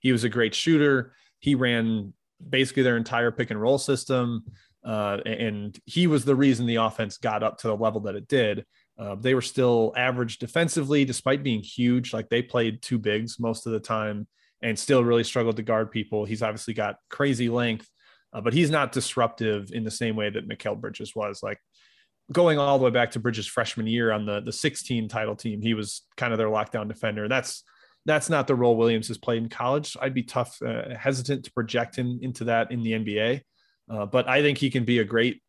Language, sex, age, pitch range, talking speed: English, male, 20-39, 110-135 Hz, 220 wpm